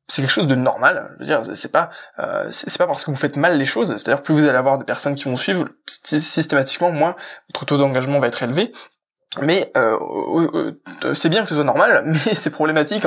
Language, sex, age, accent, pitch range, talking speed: French, male, 20-39, French, 135-165 Hz, 230 wpm